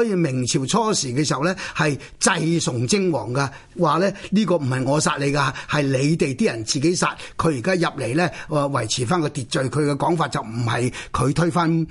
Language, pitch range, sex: Chinese, 140-185 Hz, male